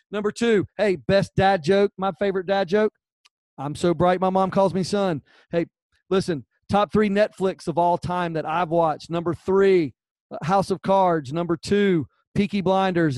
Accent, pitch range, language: American, 155-205 Hz, English